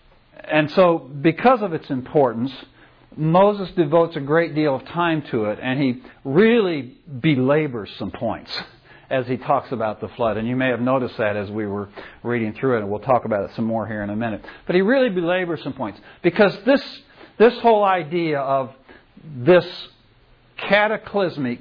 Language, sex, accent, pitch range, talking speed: English, male, American, 125-170 Hz, 180 wpm